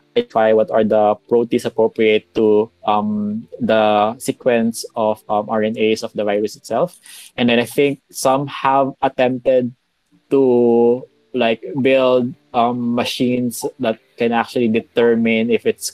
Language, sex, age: Indonesian, male, 20-39